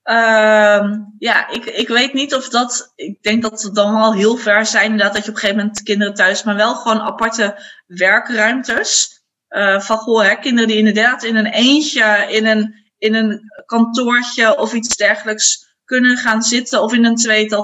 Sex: female